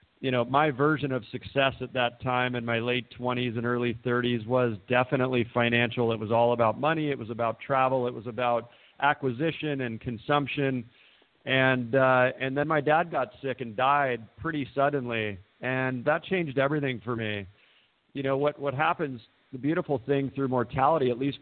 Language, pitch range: English, 120-140 Hz